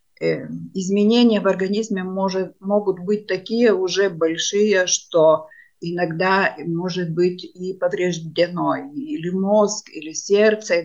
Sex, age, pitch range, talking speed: female, 50-69, 170-210 Hz, 105 wpm